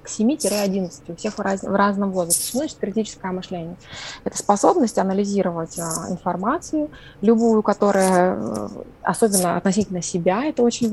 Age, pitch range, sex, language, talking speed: 20-39, 185-225 Hz, female, Russian, 120 wpm